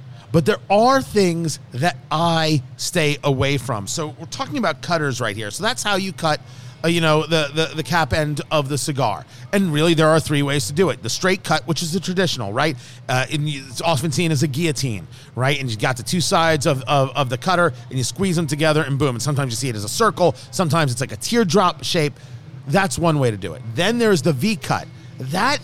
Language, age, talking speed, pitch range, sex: English, 40-59, 235 wpm, 135-195 Hz, male